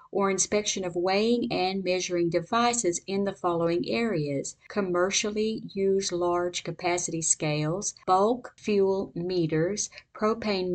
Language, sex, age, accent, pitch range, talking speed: English, female, 50-69, American, 175-210 Hz, 110 wpm